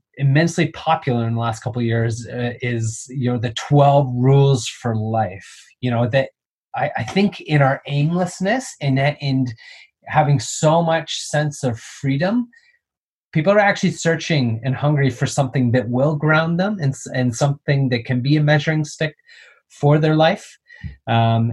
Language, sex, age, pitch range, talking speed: English, male, 30-49, 120-155 Hz, 165 wpm